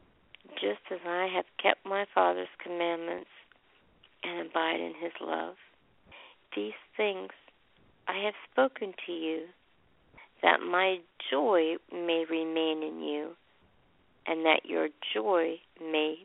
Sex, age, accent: female, 50-69, American